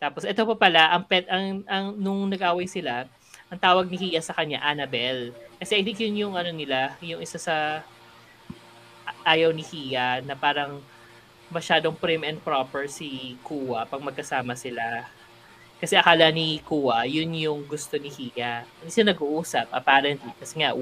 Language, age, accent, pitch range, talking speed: Filipino, 20-39, native, 130-175 Hz, 160 wpm